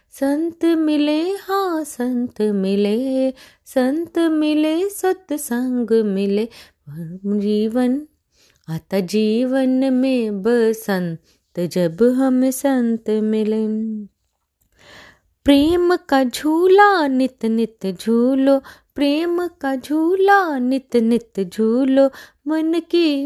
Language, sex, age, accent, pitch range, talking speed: Hindi, female, 20-39, native, 220-285 Hz, 85 wpm